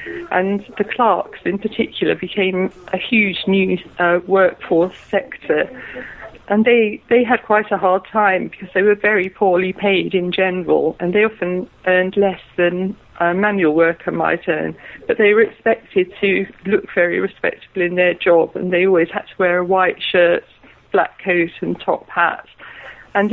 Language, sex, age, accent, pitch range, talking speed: English, female, 40-59, British, 180-205 Hz, 165 wpm